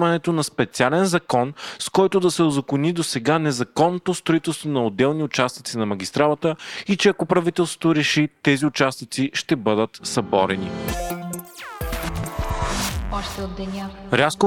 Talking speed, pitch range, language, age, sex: 115 wpm, 125-160 Hz, Bulgarian, 30-49, male